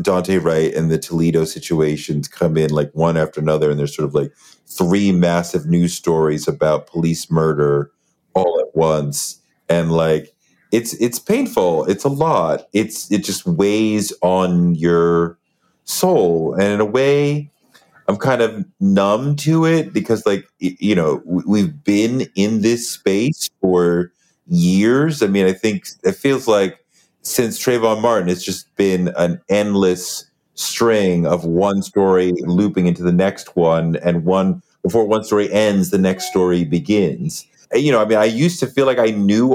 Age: 30-49